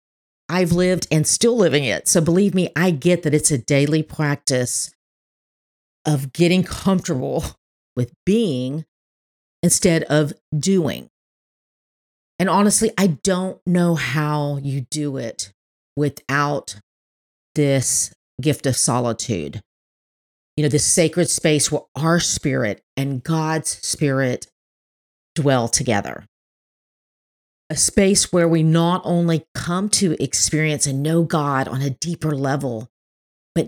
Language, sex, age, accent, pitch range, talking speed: English, female, 40-59, American, 130-165 Hz, 120 wpm